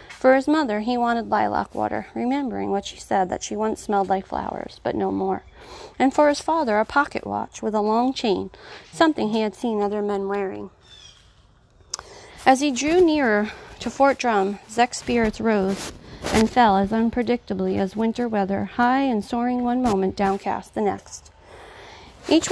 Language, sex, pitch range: English, female, 210-280 Hz